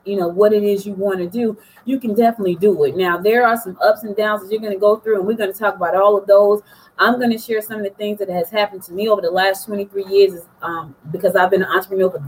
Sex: female